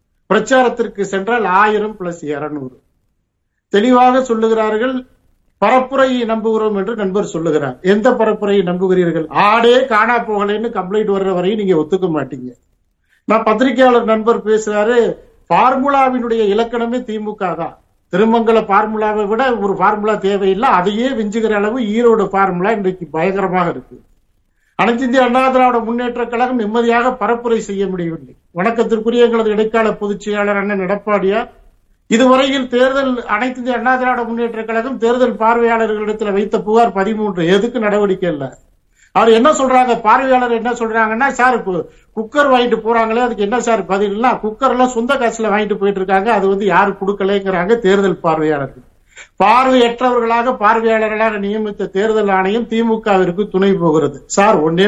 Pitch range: 195-235 Hz